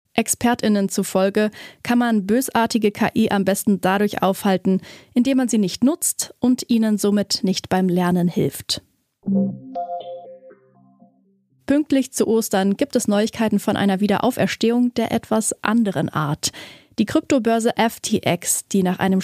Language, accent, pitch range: German, German, 190-235 Hz